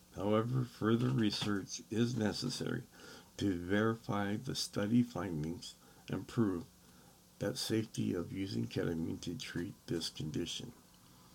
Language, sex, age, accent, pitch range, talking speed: English, male, 60-79, American, 100-125 Hz, 110 wpm